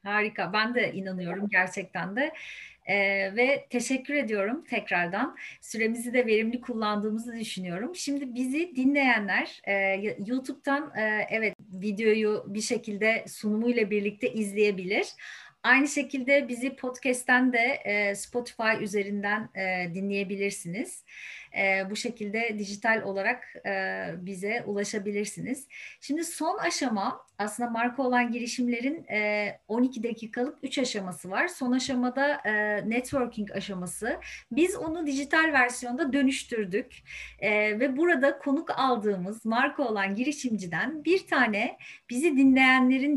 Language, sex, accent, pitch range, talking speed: Turkish, female, native, 205-275 Hz, 115 wpm